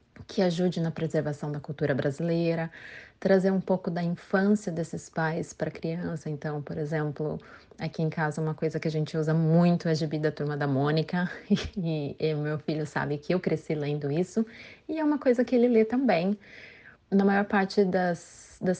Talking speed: 190 wpm